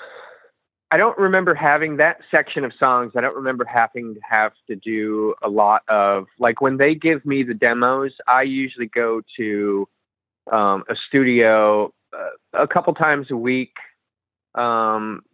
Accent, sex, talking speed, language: American, male, 155 wpm, English